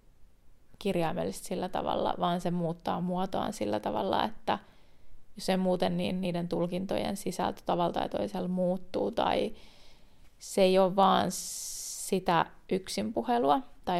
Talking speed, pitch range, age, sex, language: 110 wpm, 175-195 Hz, 30-49, female, Finnish